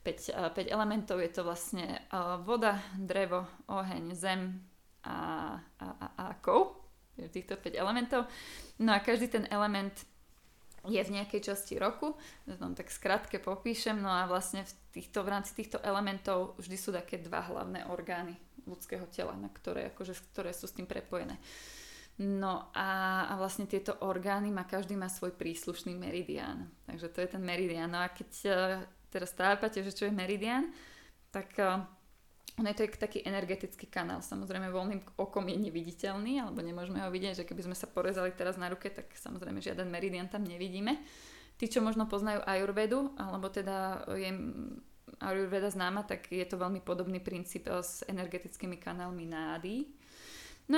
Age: 20-39